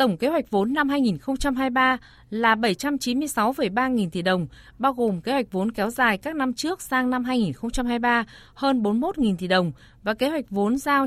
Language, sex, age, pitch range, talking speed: Vietnamese, female, 20-39, 200-260 Hz, 180 wpm